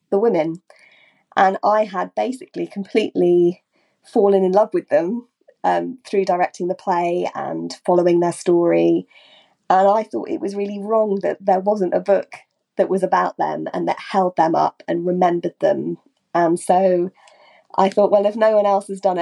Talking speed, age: 175 wpm, 20-39